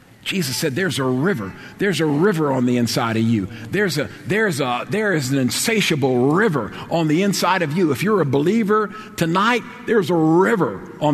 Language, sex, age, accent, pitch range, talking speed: English, male, 50-69, American, 110-155 Hz, 170 wpm